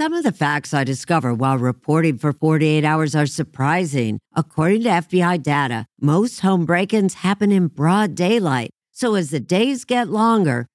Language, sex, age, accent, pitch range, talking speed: English, female, 50-69, American, 145-195 Hz, 170 wpm